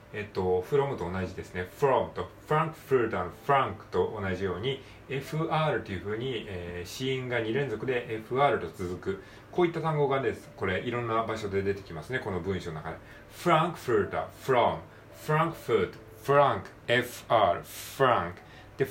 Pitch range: 100-145 Hz